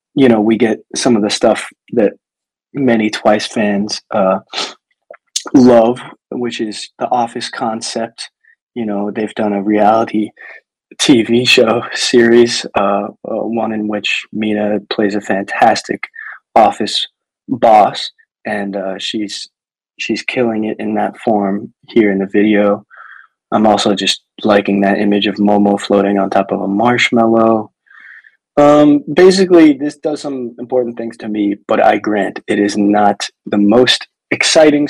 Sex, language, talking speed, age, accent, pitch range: male, English, 145 wpm, 20-39, American, 105-130 Hz